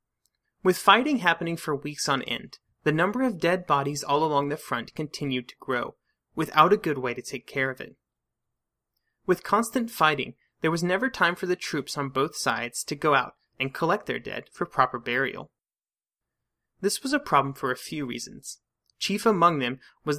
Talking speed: 185 wpm